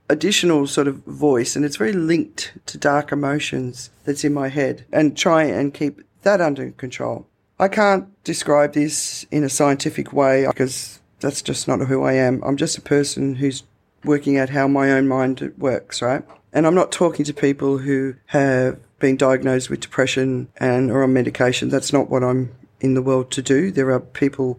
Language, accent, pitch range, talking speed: English, Australian, 130-145 Hz, 190 wpm